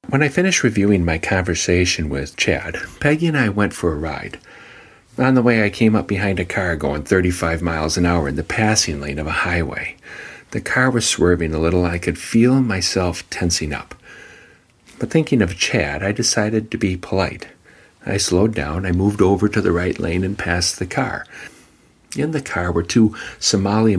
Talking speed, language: 195 wpm, English